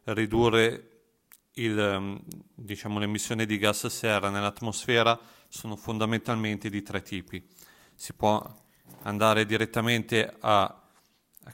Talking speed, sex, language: 100 wpm, male, Italian